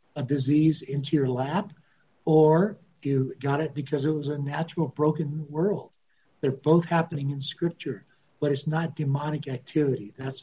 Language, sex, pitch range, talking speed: English, male, 140-165 Hz, 155 wpm